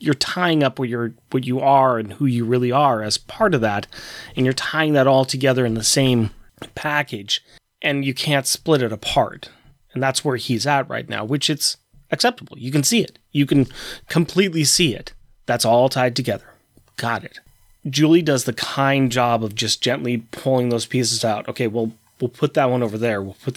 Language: English